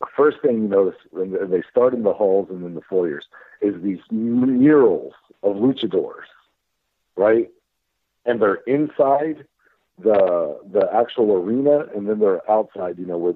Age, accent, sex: 60-79, American, male